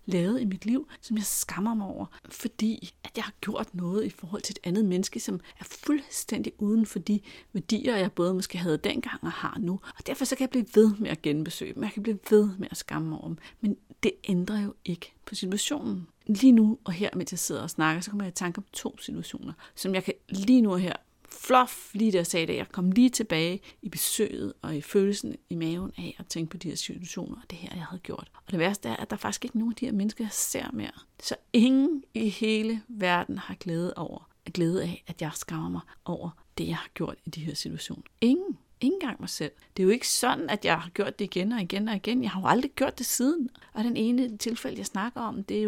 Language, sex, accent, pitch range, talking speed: Danish, female, native, 180-235 Hz, 255 wpm